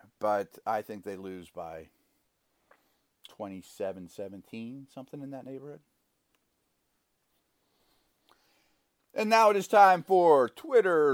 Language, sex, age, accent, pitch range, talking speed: English, male, 40-59, American, 105-140 Hz, 95 wpm